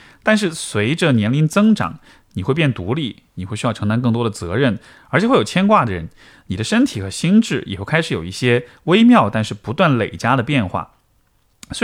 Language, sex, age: Chinese, male, 30-49